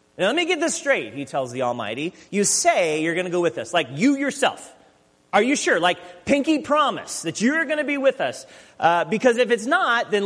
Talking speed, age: 235 wpm, 30-49